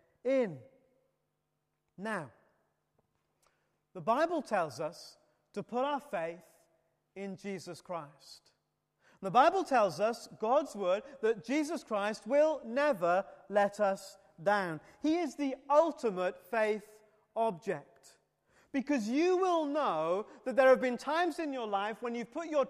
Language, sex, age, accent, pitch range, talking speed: English, male, 40-59, British, 195-260 Hz, 130 wpm